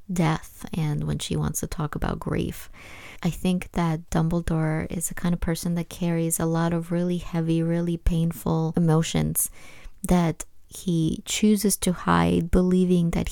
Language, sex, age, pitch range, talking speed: English, female, 30-49, 160-180 Hz, 160 wpm